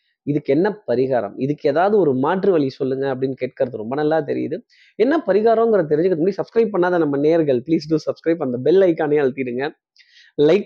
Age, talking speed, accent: 20-39, 170 wpm, native